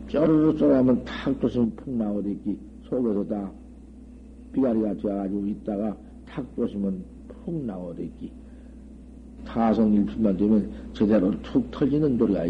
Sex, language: male, Korean